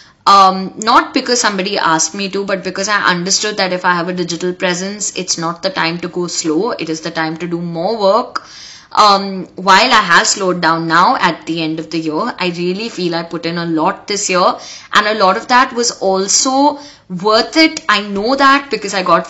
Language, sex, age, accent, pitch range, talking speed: English, female, 20-39, Indian, 180-240 Hz, 220 wpm